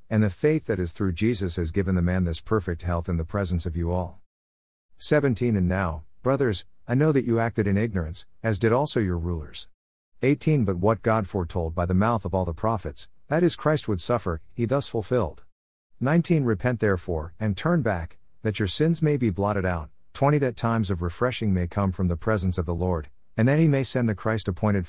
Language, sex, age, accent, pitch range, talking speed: English, male, 50-69, American, 90-120 Hz, 215 wpm